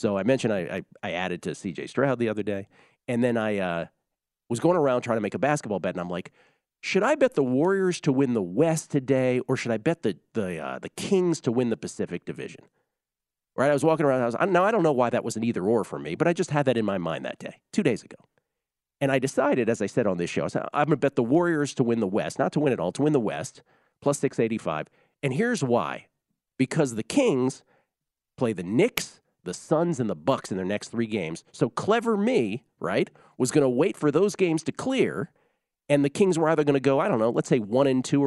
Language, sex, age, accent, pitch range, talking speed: English, male, 40-59, American, 105-155 Hz, 255 wpm